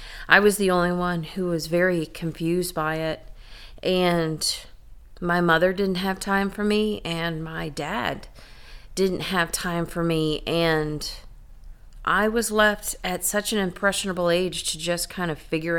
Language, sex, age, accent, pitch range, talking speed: English, female, 40-59, American, 155-180 Hz, 155 wpm